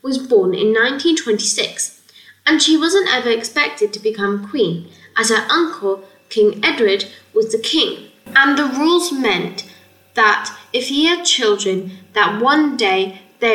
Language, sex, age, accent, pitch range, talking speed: English, female, 10-29, British, 210-310 Hz, 145 wpm